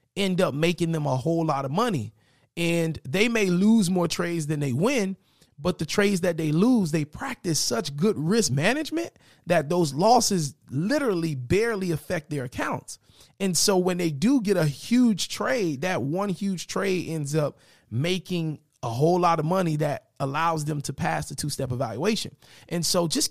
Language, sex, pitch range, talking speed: English, male, 145-185 Hz, 180 wpm